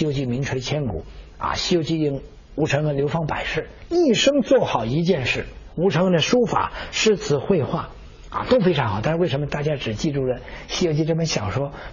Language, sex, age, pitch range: Chinese, male, 60-79, 130-190 Hz